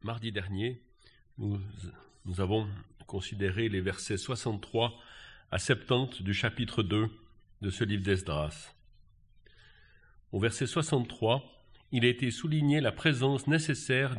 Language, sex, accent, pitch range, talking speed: French, male, French, 105-140 Hz, 120 wpm